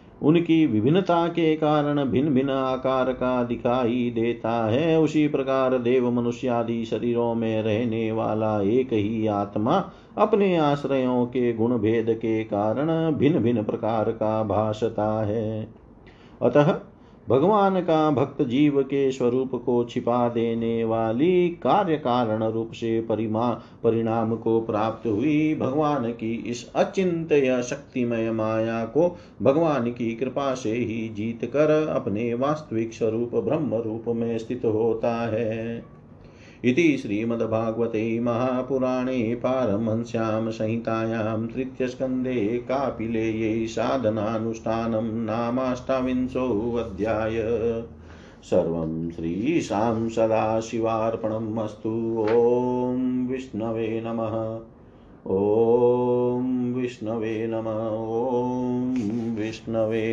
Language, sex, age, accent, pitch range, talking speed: Hindi, male, 40-59, native, 110-130 Hz, 95 wpm